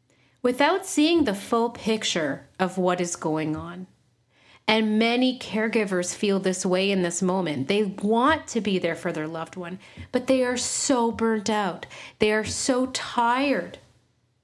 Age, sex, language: 40-59, female, English